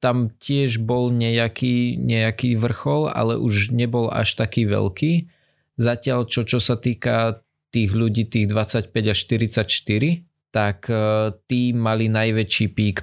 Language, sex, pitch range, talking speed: Slovak, male, 100-120 Hz, 130 wpm